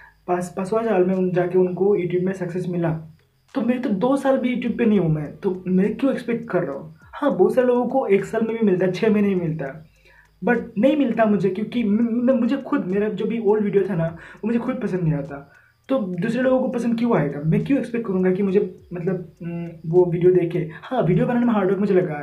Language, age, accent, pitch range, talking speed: Hindi, 20-39, native, 180-225 Hz, 240 wpm